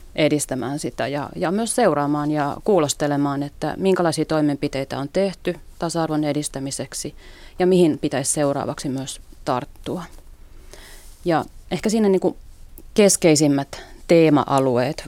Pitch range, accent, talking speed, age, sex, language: 140-160 Hz, native, 105 wpm, 30-49, female, Finnish